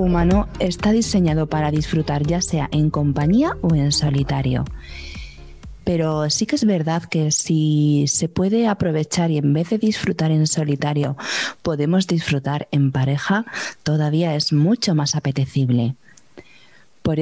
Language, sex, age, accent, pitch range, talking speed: Spanish, female, 20-39, Spanish, 150-195 Hz, 135 wpm